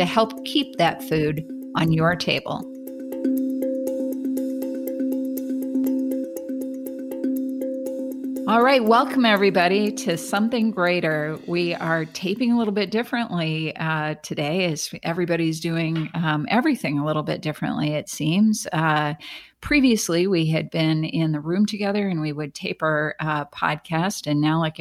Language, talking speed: English, 130 wpm